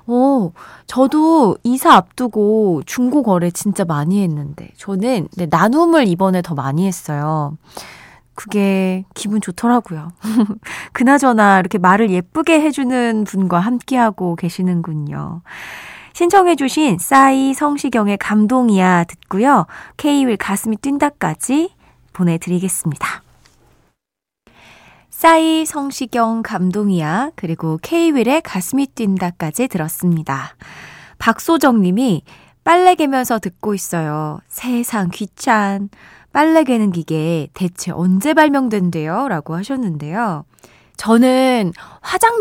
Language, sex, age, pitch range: Korean, female, 20-39, 180-270 Hz